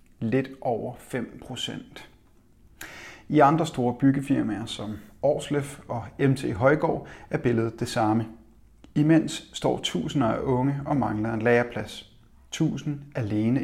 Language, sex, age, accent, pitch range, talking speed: Danish, male, 30-49, native, 110-140 Hz, 125 wpm